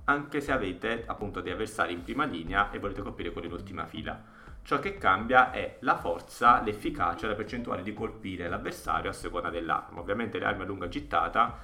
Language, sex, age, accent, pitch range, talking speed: Italian, male, 30-49, native, 85-100 Hz, 195 wpm